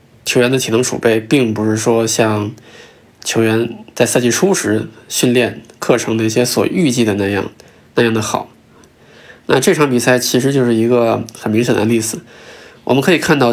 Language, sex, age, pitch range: Chinese, male, 20-39, 110-125 Hz